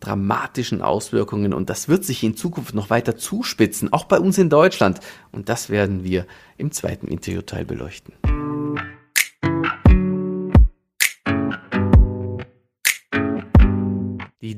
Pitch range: 100-135 Hz